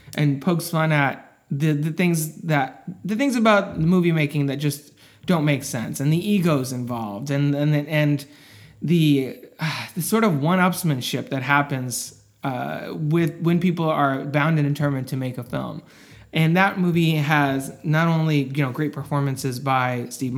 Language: English